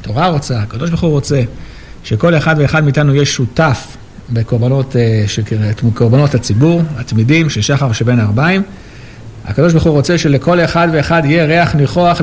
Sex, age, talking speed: male, 60-79, 150 wpm